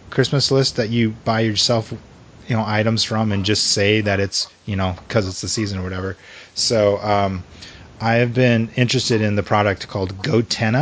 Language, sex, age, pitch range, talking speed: English, male, 30-49, 100-115 Hz, 185 wpm